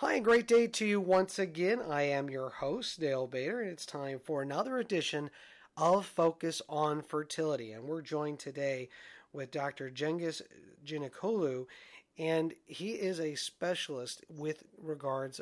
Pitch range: 145-185 Hz